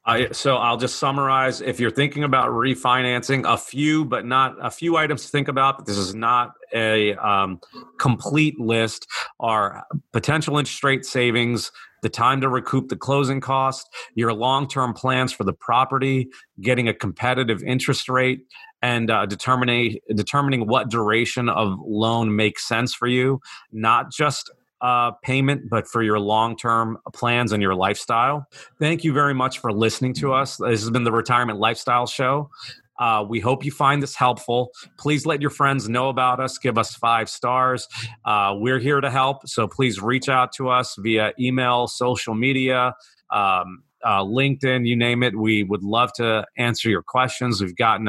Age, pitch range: 40-59, 115-135 Hz